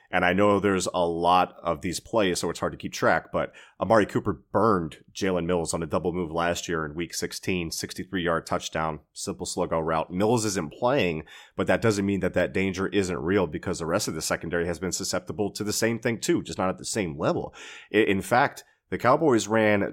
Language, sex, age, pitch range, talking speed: English, male, 30-49, 90-105 Hz, 215 wpm